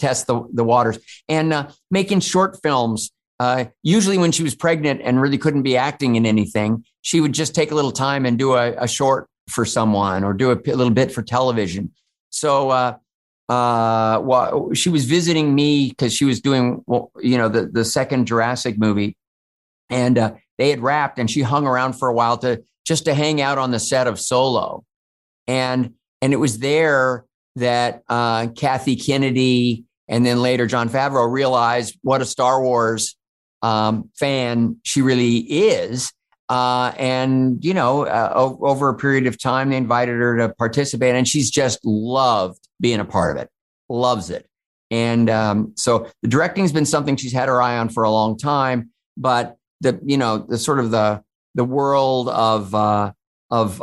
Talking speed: 185 wpm